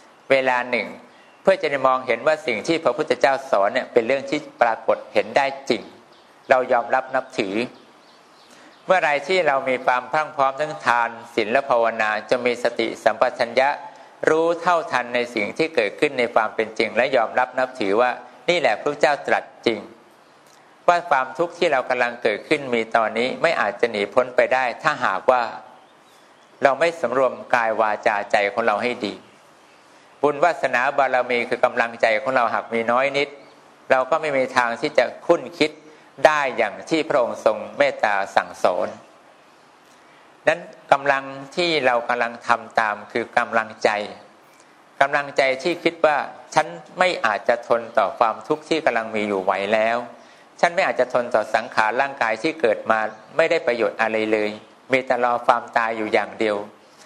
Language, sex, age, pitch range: English, male, 60-79, 115-140 Hz